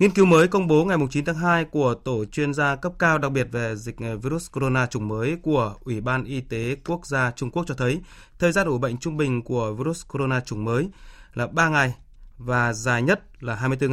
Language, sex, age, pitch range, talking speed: Vietnamese, male, 20-39, 125-155 Hz, 230 wpm